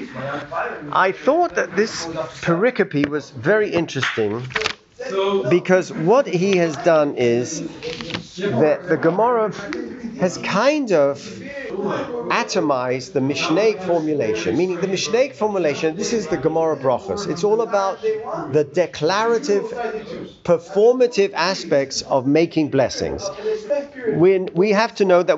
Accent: British